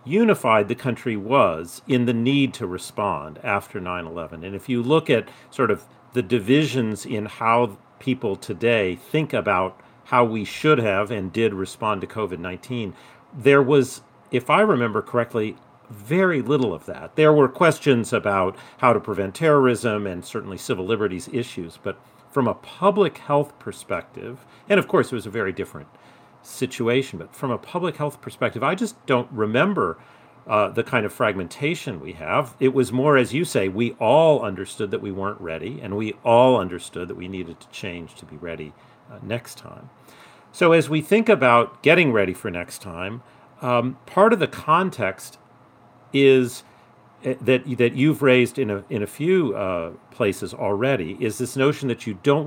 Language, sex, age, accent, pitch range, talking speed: English, male, 40-59, American, 105-135 Hz, 175 wpm